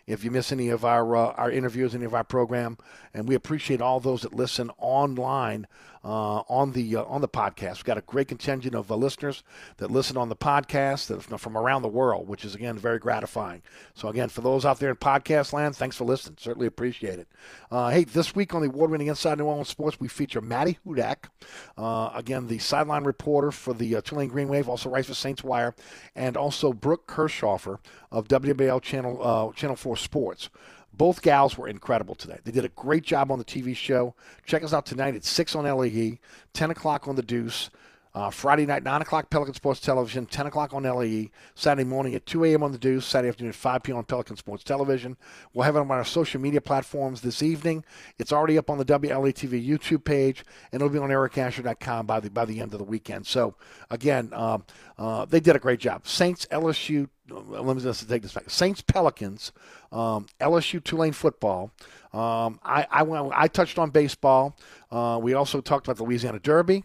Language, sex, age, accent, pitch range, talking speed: English, male, 50-69, American, 120-145 Hz, 210 wpm